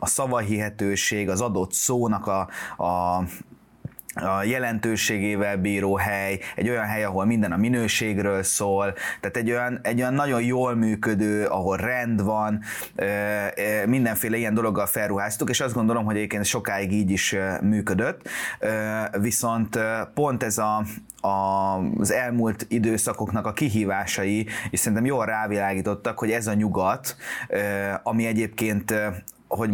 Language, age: Hungarian, 20-39